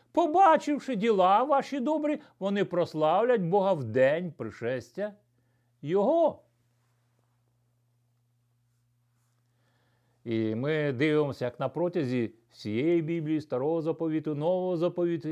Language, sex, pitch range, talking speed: Ukrainian, male, 120-150 Hz, 85 wpm